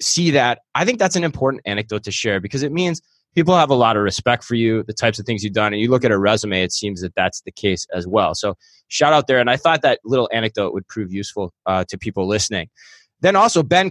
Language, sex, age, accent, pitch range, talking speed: English, male, 20-39, American, 105-145 Hz, 265 wpm